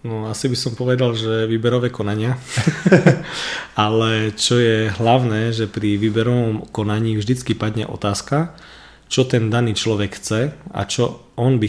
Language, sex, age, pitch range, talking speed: Slovak, male, 20-39, 100-115 Hz, 145 wpm